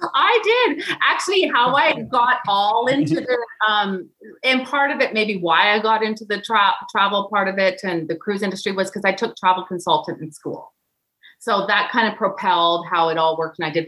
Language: English